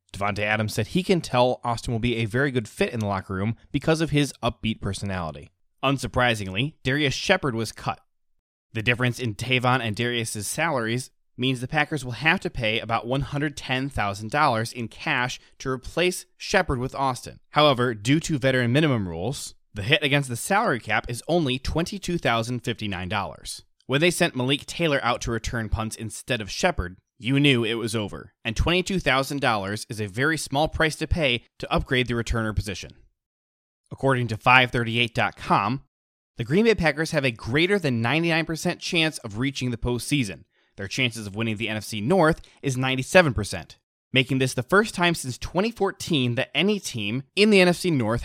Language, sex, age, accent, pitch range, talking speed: English, male, 20-39, American, 110-145 Hz, 170 wpm